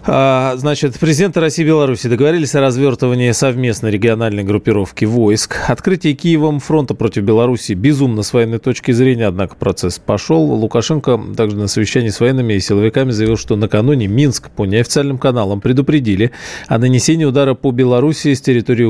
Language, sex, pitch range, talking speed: Russian, male, 105-140 Hz, 150 wpm